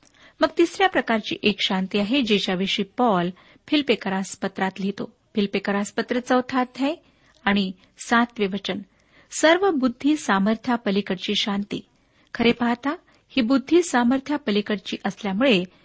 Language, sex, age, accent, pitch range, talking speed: Marathi, female, 50-69, native, 200-265 Hz, 105 wpm